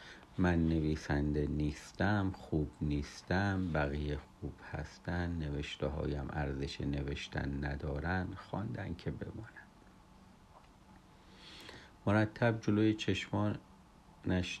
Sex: male